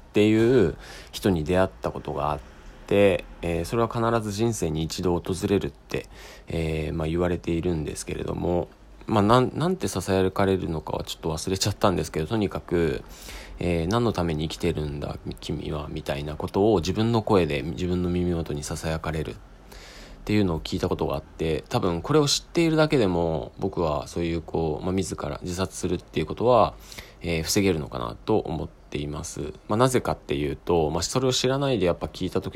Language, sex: Japanese, male